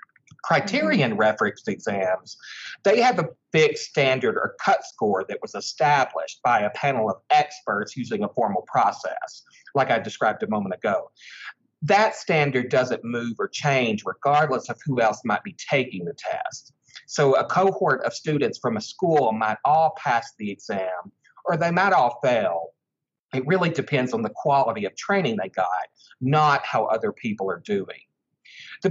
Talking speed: 160 wpm